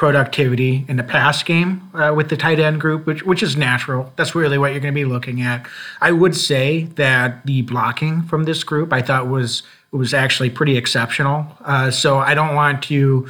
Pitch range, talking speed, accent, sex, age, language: 130-155 Hz, 210 wpm, American, male, 30-49, English